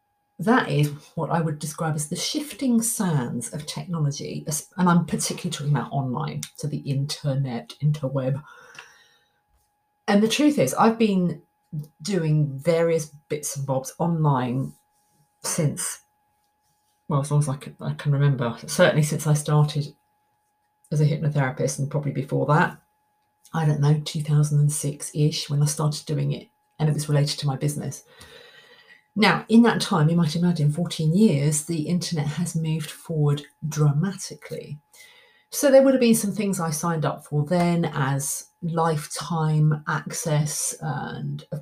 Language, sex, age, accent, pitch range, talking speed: English, female, 40-59, British, 150-200 Hz, 150 wpm